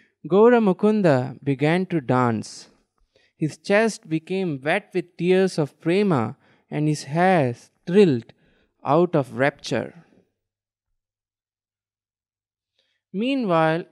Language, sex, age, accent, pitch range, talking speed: English, male, 20-39, Indian, 145-195 Hz, 85 wpm